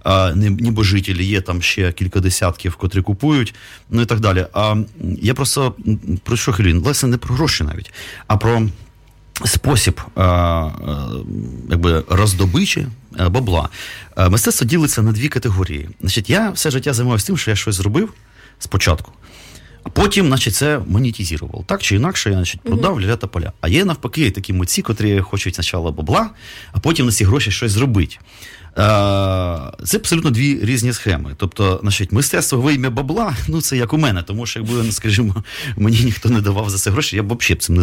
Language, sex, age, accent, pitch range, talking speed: Ukrainian, male, 30-49, native, 90-120 Hz, 180 wpm